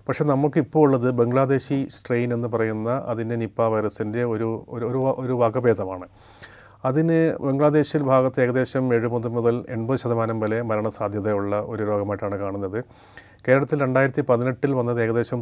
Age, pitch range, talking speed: 30-49, 110-130 Hz, 115 wpm